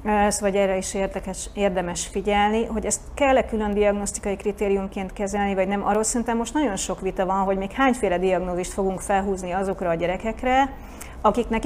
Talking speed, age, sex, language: 170 wpm, 30-49, female, Hungarian